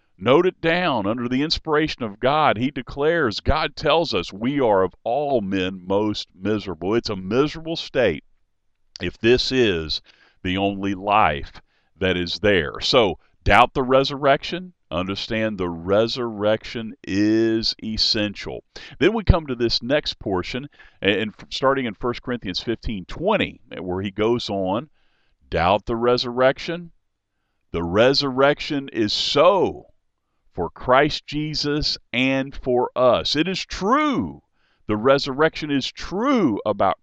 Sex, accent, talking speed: male, American, 130 wpm